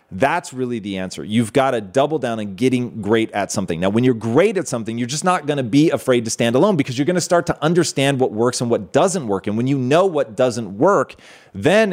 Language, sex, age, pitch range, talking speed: English, male, 30-49, 110-150 Hz, 245 wpm